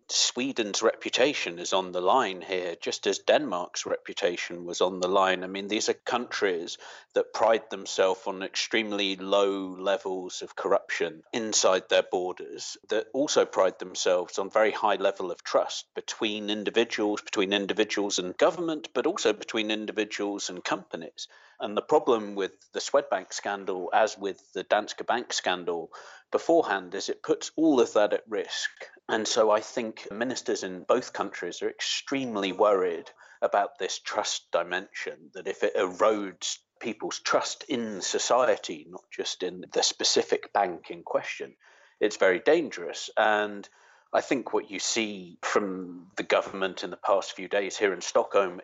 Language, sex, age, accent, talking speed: English, male, 50-69, British, 155 wpm